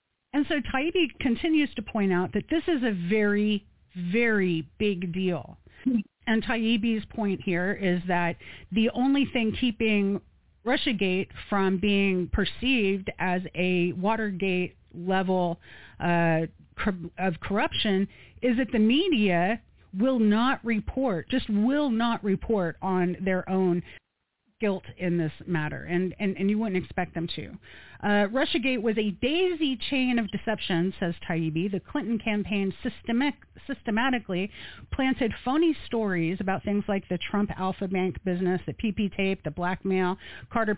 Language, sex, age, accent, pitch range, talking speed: English, female, 40-59, American, 180-230 Hz, 140 wpm